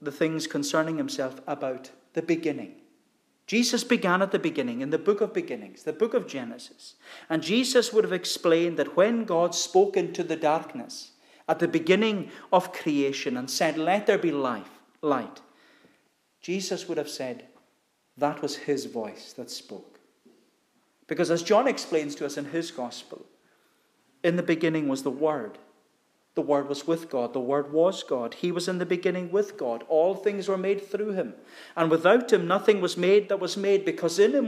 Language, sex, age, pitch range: English, male, 40-59, 160-210 Hz